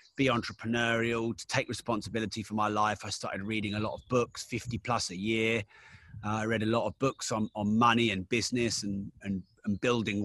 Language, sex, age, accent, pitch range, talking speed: English, male, 30-49, British, 110-130 Hz, 205 wpm